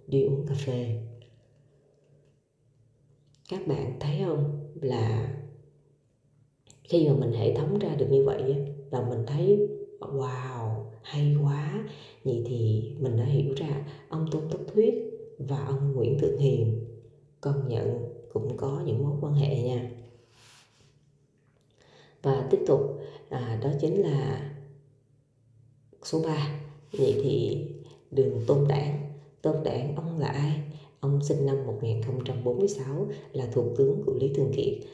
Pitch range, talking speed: 130-145 Hz, 135 wpm